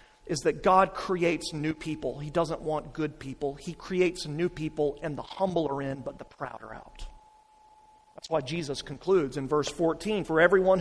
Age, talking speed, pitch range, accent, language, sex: 40-59, 190 wpm, 165-235 Hz, American, English, male